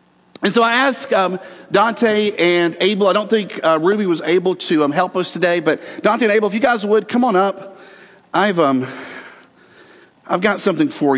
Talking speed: 200 wpm